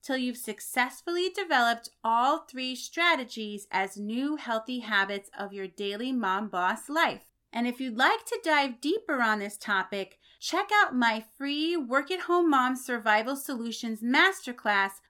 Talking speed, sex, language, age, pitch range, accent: 145 wpm, female, English, 30-49, 215-280 Hz, American